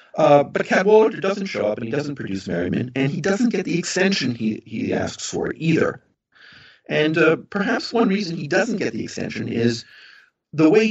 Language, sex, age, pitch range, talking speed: English, male, 40-59, 130-185 Hz, 200 wpm